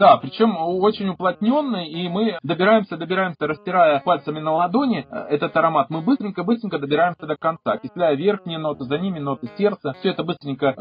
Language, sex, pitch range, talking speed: Russian, male, 140-205 Hz, 160 wpm